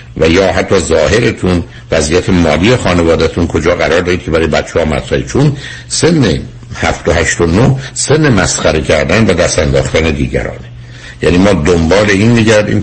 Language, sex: Persian, male